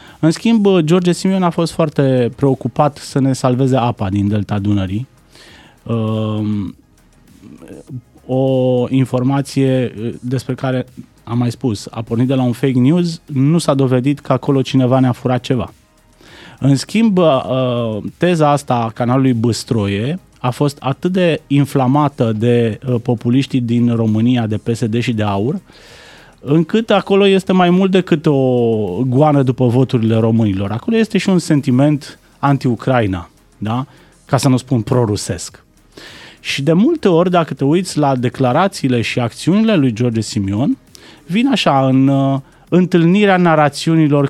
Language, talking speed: Romanian, 140 wpm